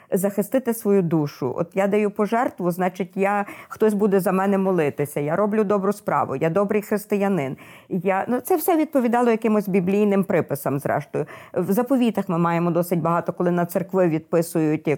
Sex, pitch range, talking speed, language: female, 175-220 Hz, 160 wpm, Ukrainian